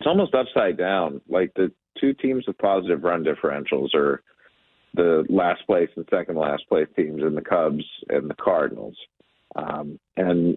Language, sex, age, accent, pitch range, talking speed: English, male, 50-69, American, 90-150 Hz, 165 wpm